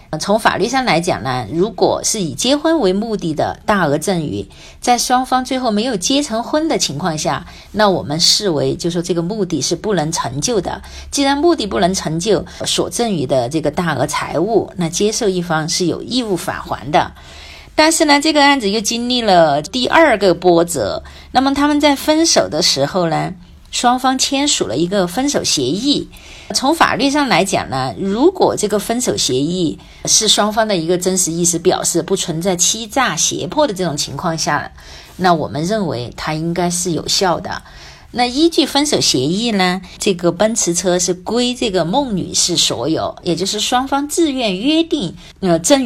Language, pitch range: Chinese, 170-255 Hz